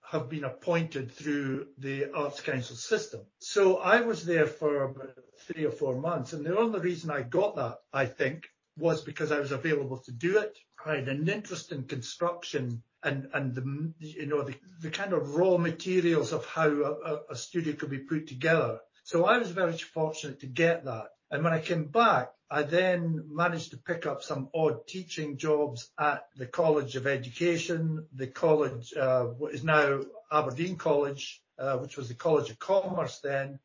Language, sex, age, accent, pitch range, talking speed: English, male, 60-79, British, 145-170 Hz, 185 wpm